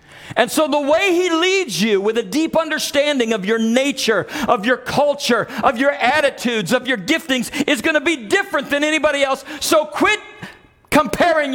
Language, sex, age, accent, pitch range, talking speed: English, male, 50-69, American, 195-270 Hz, 175 wpm